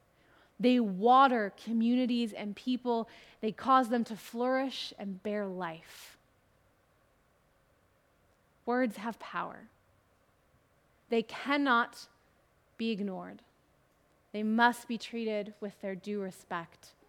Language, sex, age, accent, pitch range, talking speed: English, female, 20-39, American, 185-240 Hz, 100 wpm